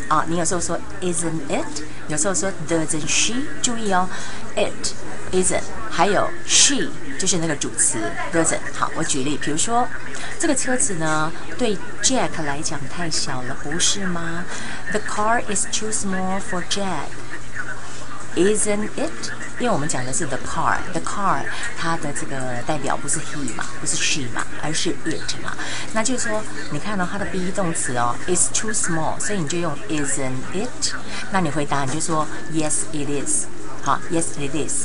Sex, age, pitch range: female, 30-49, 150-185 Hz